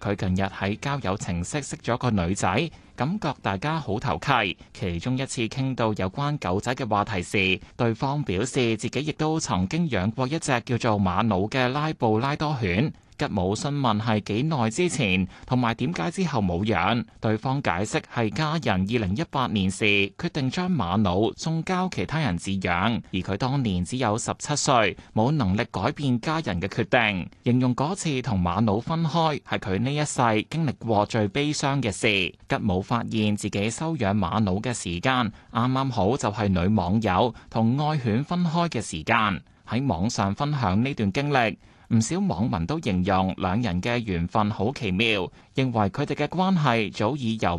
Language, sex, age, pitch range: Chinese, male, 20-39, 100-135 Hz